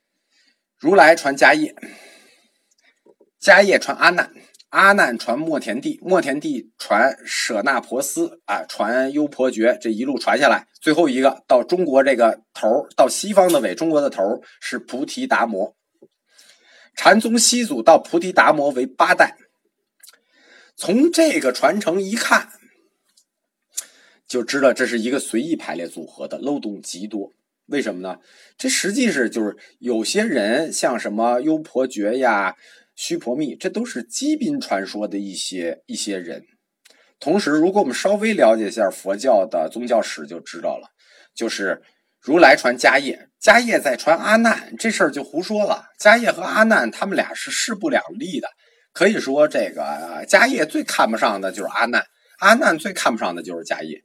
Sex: male